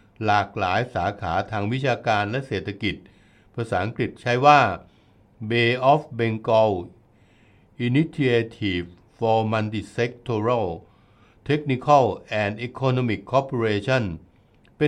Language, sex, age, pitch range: Thai, male, 60-79, 105-130 Hz